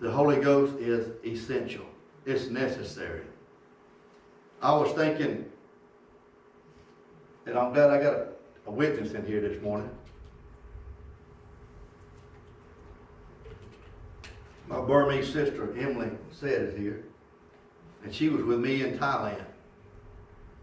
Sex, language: male, English